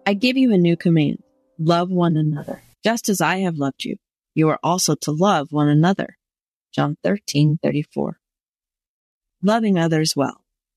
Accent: American